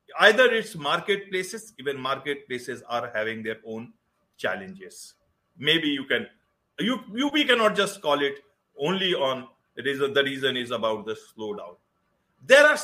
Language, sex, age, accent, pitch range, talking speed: English, male, 50-69, Indian, 180-240 Hz, 150 wpm